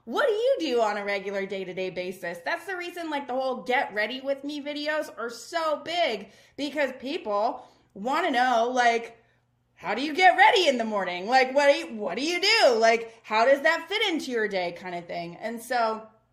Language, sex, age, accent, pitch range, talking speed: English, female, 20-39, American, 200-265 Hz, 210 wpm